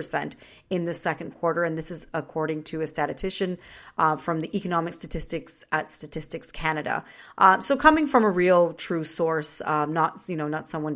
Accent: American